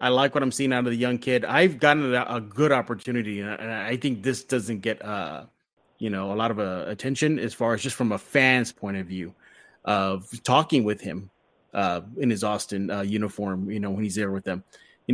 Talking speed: 230 wpm